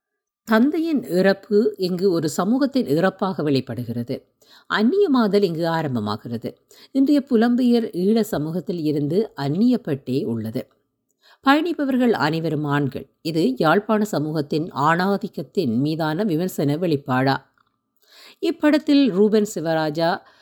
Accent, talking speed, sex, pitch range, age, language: native, 85 wpm, female, 145-210 Hz, 50-69, Tamil